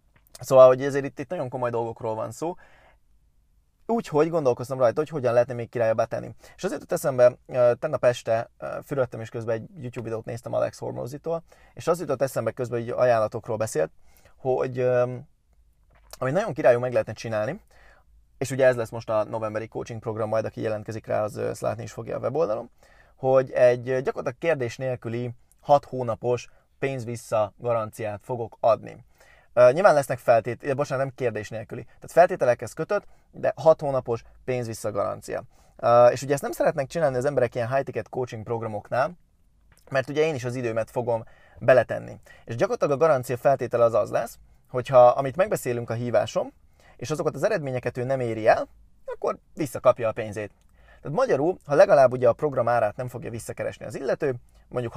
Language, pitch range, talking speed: Hungarian, 115-135 Hz, 170 wpm